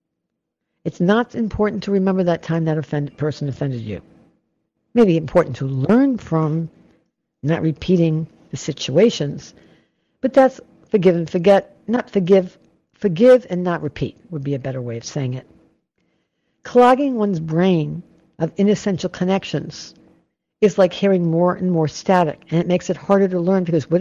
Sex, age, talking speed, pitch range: female, 60-79, 155 wpm, 160-220 Hz